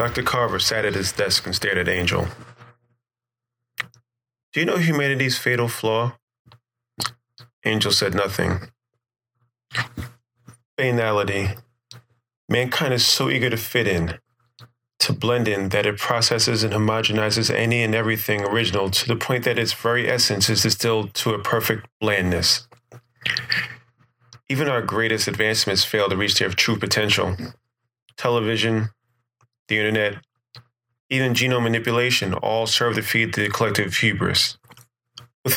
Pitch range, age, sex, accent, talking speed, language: 105-120 Hz, 30-49, male, American, 130 wpm, English